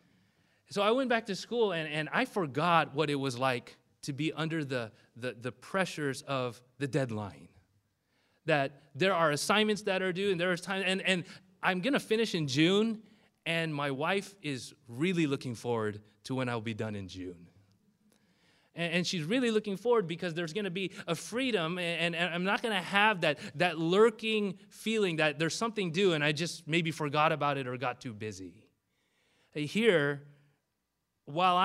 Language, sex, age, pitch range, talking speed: English, male, 30-49, 140-190 Hz, 180 wpm